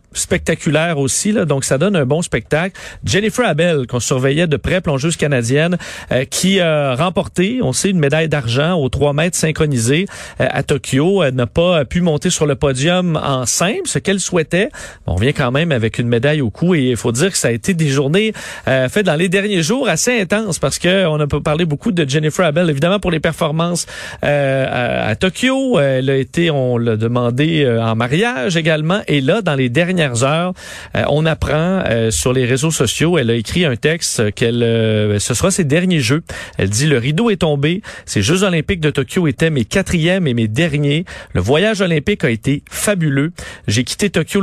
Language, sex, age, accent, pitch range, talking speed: French, male, 40-59, Canadian, 135-180 Hz, 205 wpm